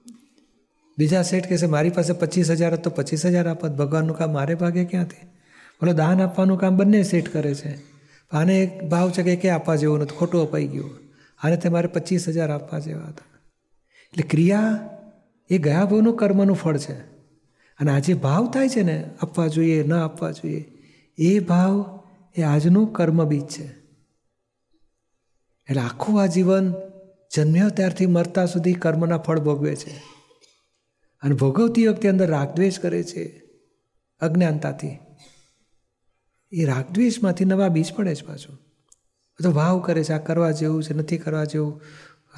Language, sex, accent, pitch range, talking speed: Gujarati, male, native, 150-180 Hz, 150 wpm